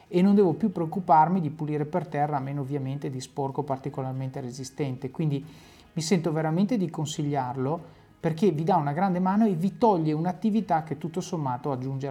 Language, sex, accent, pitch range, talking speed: Italian, male, native, 145-190 Hz, 180 wpm